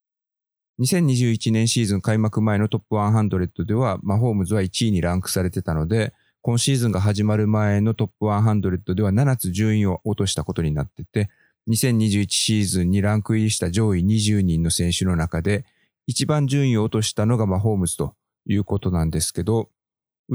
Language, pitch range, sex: Japanese, 95-115 Hz, male